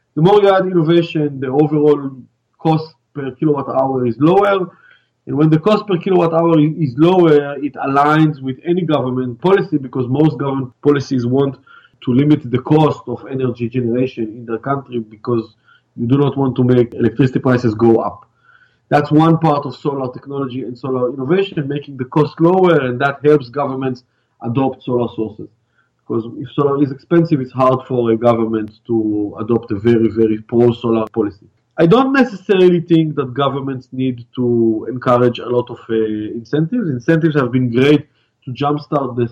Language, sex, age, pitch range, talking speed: English, male, 30-49, 125-155 Hz, 170 wpm